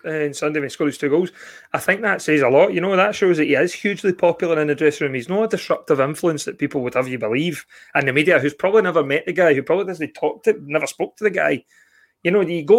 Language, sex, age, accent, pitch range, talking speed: English, male, 30-49, British, 145-190 Hz, 285 wpm